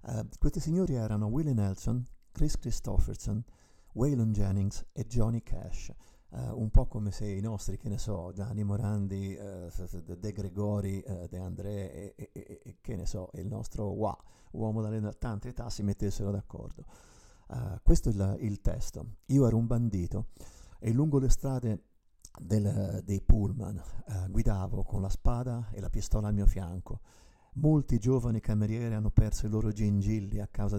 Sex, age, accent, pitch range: male, 50-69, native, 100-120 Hz